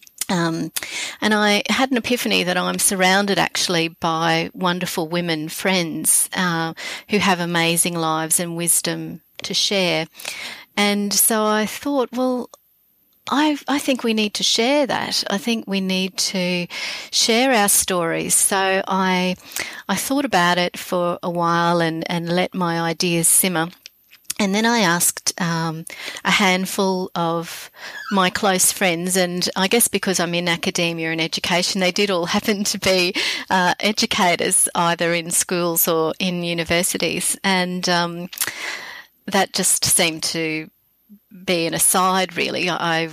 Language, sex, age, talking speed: English, female, 40-59, 145 wpm